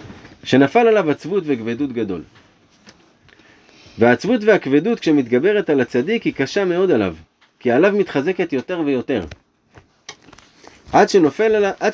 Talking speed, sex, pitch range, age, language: 95 wpm, male, 115-190 Hz, 30-49, Hebrew